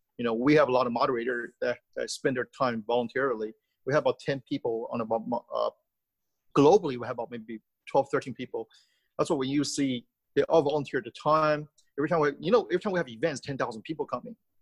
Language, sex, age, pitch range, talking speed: English, male, 30-49, 125-190 Hz, 220 wpm